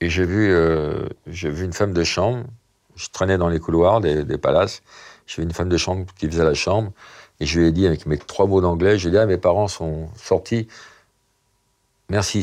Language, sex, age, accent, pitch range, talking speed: French, male, 50-69, French, 80-100 Hz, 230 wpm